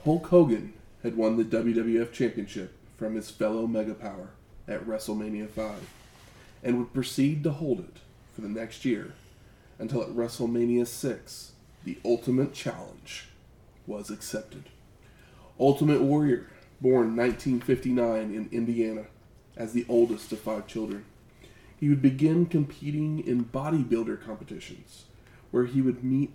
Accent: American